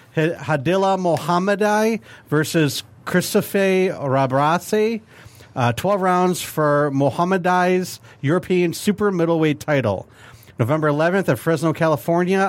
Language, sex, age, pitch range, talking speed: English, male, 40-59, 130-170 Hz, 90 wpm